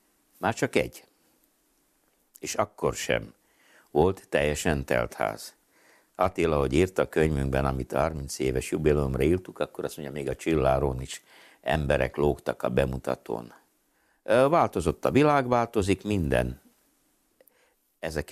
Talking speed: 120 wpm